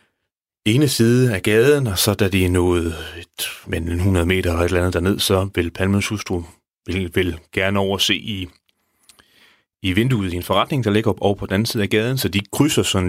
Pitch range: 90-115 Hz